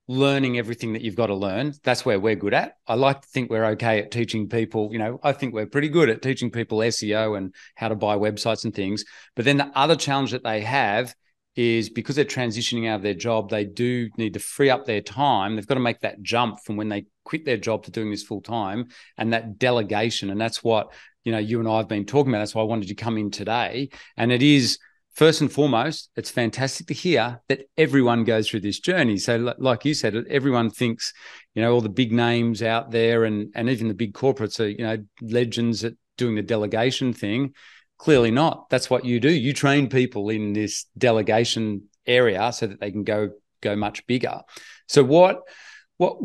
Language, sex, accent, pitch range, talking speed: English, male, Australian, 110-135 Hz, 220 wpm